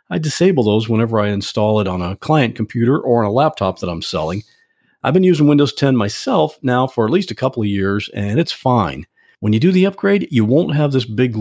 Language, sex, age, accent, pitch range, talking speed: English, male, 50-69, American, 110-155 Hz, 235 wpm